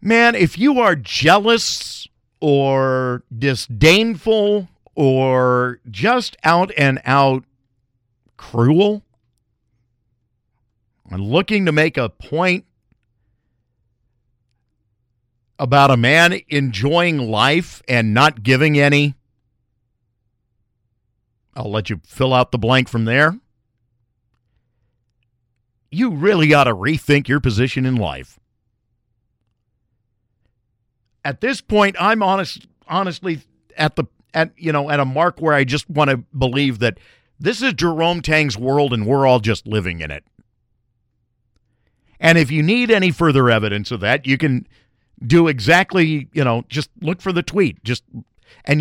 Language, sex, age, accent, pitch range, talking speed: English, male, 50-69, American, 115-155 Hz, 125 wpm